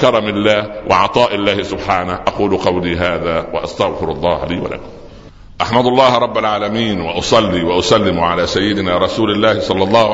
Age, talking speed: 60-79, 140 wpm